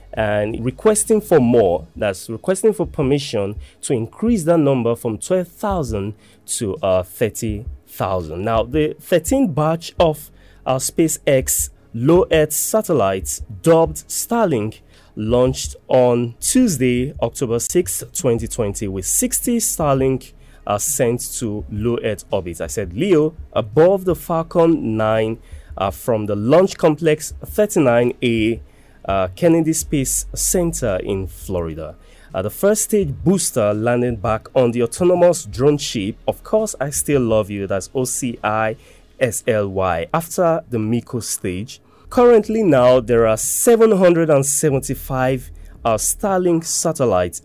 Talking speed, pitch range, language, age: 120 wpm, 105-165 Hz, English, 30-49